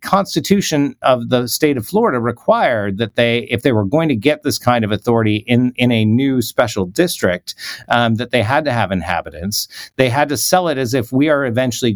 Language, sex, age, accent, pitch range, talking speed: English, male, 50-69, American, 95-120 Hz, 210 wpm